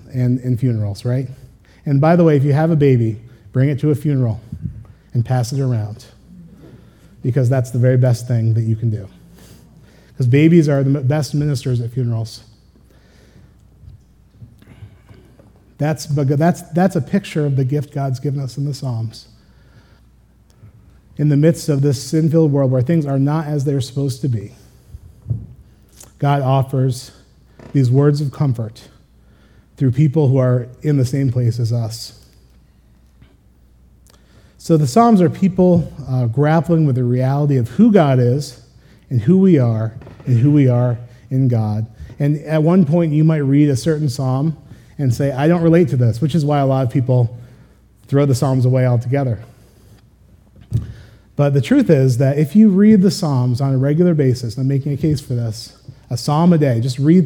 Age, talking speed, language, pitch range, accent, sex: 30-49, 175 wpm, English, 120-150 Hz, American, male